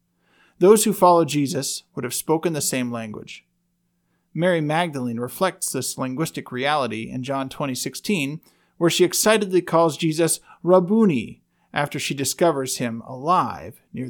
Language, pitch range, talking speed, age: English, 135-180 Hz, 135 wpm, 40-59